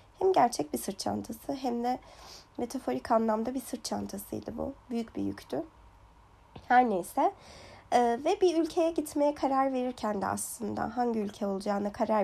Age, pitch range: 30-49, 225-340 Hz